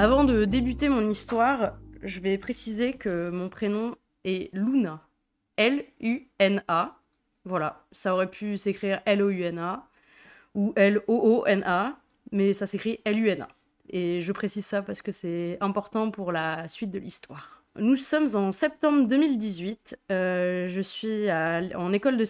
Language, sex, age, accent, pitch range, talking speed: French, female, 20-39, French, 185-230 Hz, 135 wpm